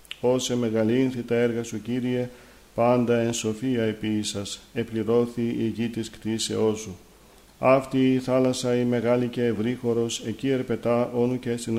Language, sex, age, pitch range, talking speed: Greek, male, 50-69, 110-125 Hz, 150 wpm